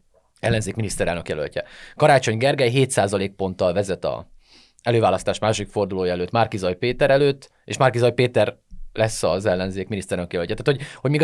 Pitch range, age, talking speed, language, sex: 105-140 Hz, 20-39, 145 wpm, Hungarian, male